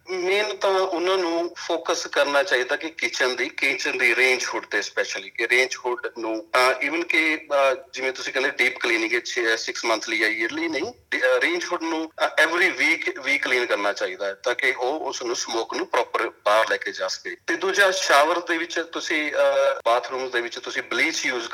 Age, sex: 30-49, male